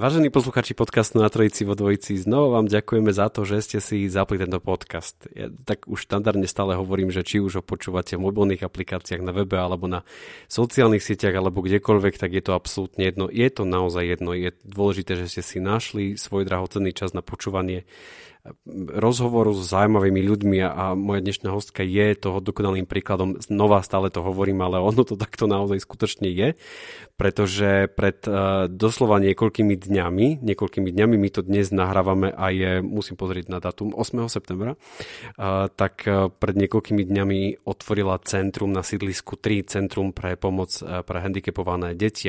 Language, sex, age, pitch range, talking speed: Slovak, male, 30-49, 95-105 Hz, 175 wpm